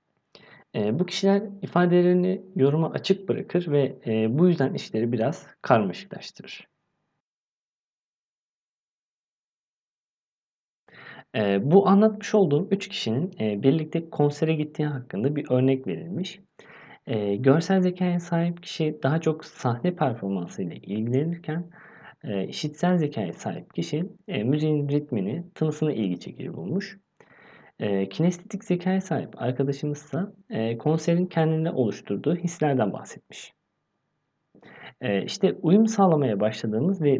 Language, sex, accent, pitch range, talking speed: Turkish, male, native, 130-180 Hz, 105 wpm